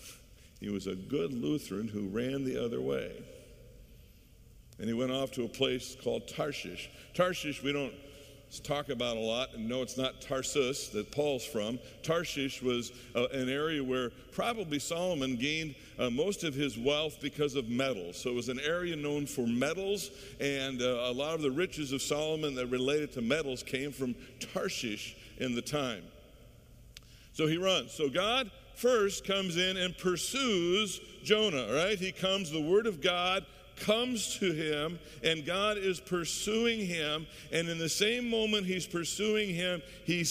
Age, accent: 50-69, American